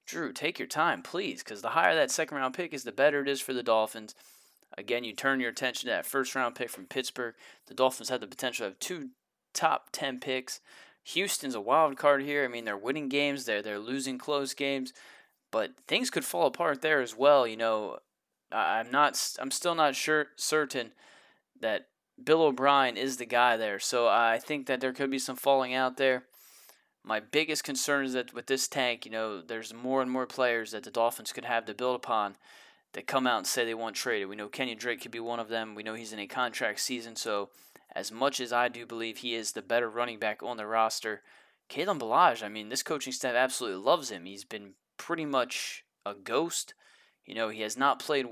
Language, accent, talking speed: English, American, 215 wpm